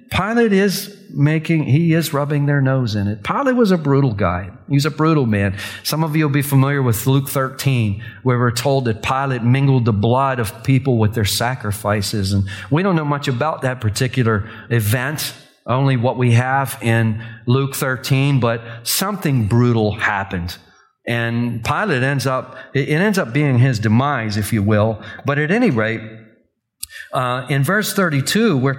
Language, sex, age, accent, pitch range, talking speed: English, male, 40-59, American, 110-150 Hz, 175 wpm